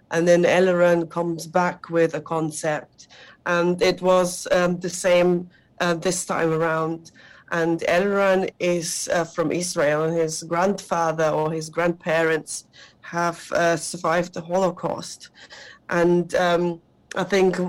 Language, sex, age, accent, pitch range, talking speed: English, female, 30-49, British, 160-180 Hz, 130 wpm